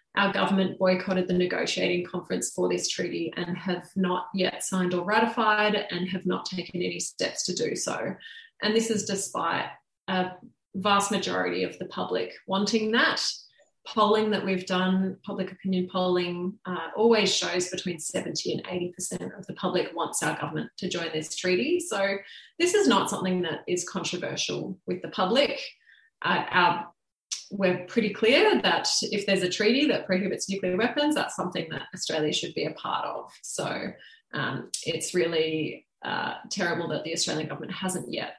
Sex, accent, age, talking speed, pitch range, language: female, Australian, 30-49, 170 wpm, 180-215 Hz, English